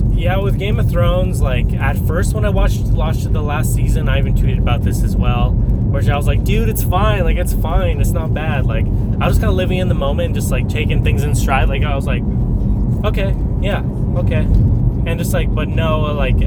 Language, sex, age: English, male, 20-39